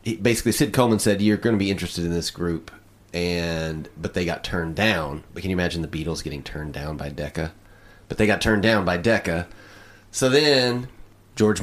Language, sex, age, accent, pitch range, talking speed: English, male, 30-49, American, 90-110 Hz, 200 wpm